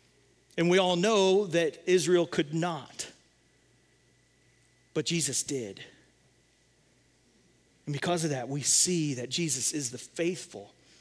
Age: 40-59